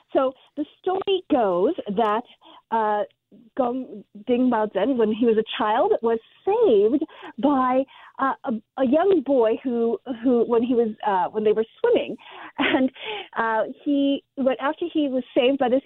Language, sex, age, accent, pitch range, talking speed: English, female, 40-59, American, 210-280 Hz, 160 wpm